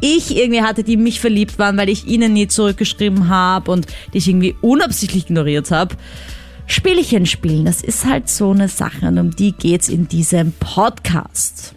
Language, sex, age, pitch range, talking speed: German, female, 20-39, 180-240 Hz, 175 wpm